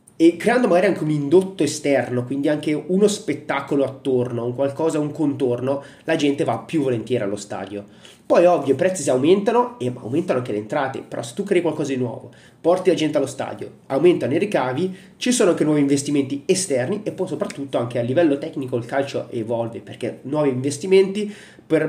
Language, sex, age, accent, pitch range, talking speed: Italian, male, 30-49, native, 125-165 Hz, 190 wpm